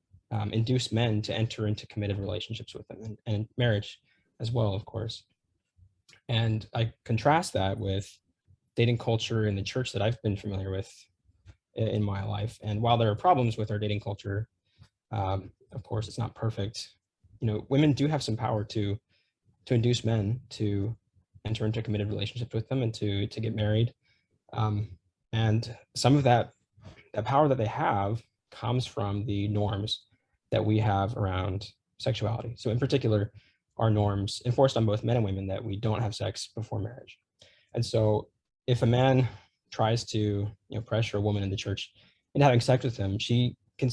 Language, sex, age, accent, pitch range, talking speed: English, male, 20-39, American, 100-120 Hz, 180 wpm